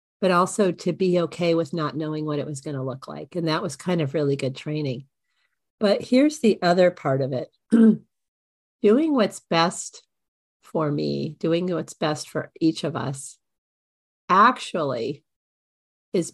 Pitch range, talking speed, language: 150-180 Hz, 160 wpm, English